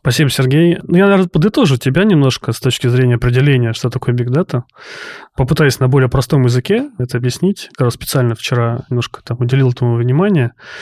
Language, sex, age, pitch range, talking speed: Russian, male, 20-39, 125-155 Hz, 175 wpm